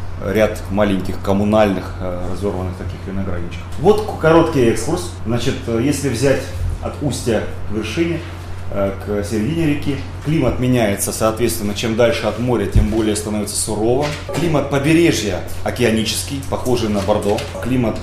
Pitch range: 95-125 Hz